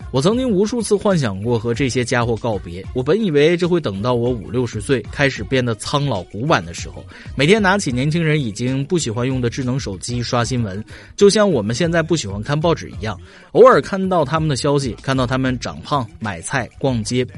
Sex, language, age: male, Chinese, 20-39